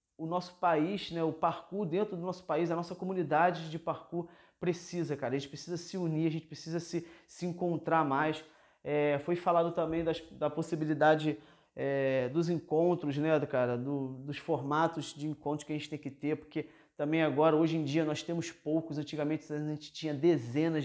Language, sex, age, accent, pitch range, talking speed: Portuguese, male, 20-39, Brazilian, 145-170 Hz, 190 wpm